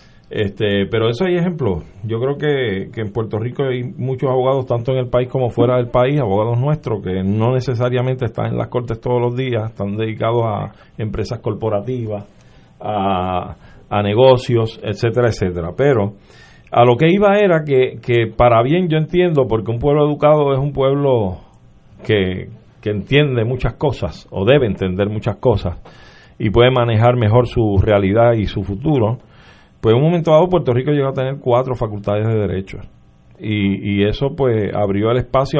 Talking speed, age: 175 wpm, 40-59